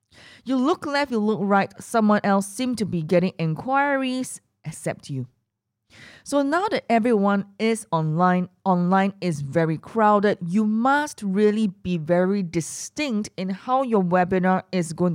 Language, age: English, 20-39